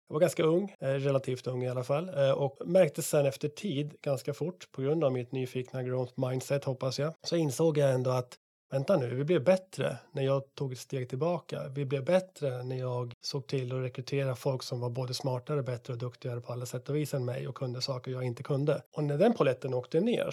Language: Swedish